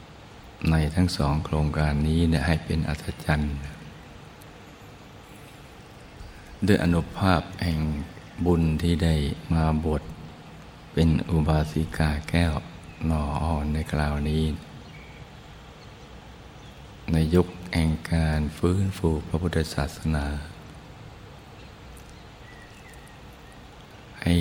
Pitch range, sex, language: 75-85 Hz, male, Thai